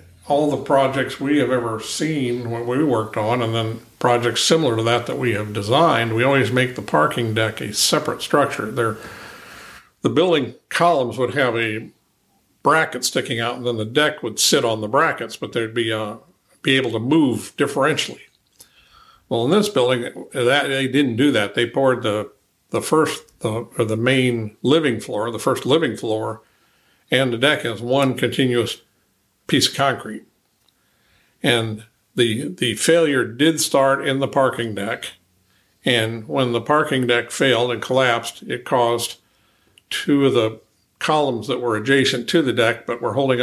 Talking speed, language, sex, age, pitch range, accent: 170 wpm, English, male, 50-69, 110-135 Hz, American